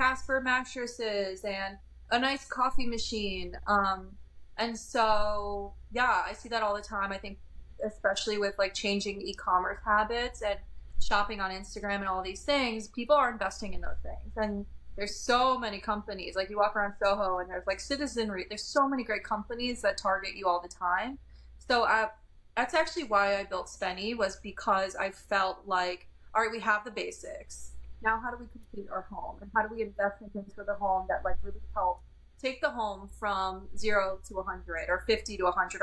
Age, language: 20-39, English